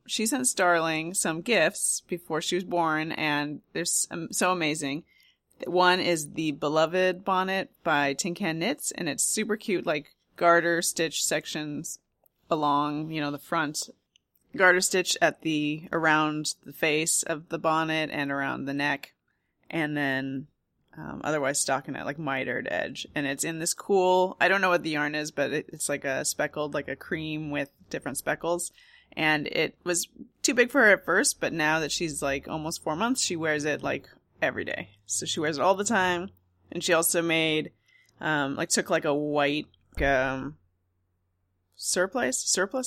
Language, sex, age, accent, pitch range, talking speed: English, female, 30-49, American, 145-180 Hz, 170 wpm